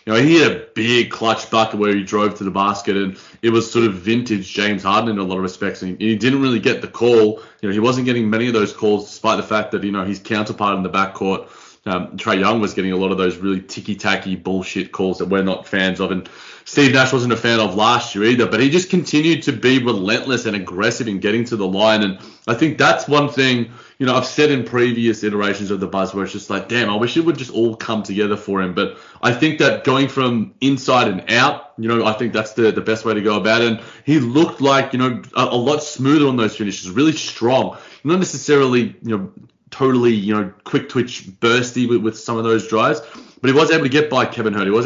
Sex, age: male, 20-39